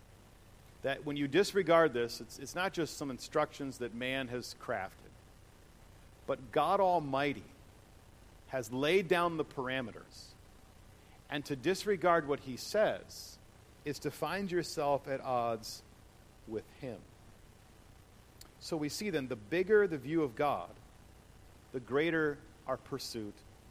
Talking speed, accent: 130 wpm, American